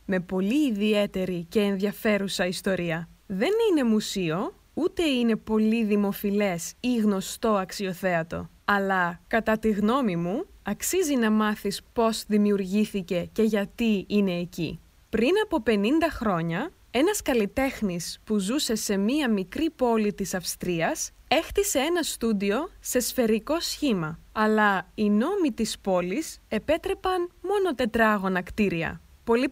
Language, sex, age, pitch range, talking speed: Greek, female, 20-39, 195-255 Hz, 120 wpm